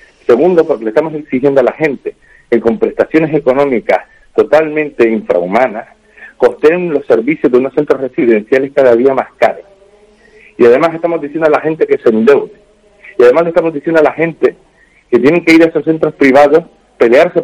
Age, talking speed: 50-69, 175 wpm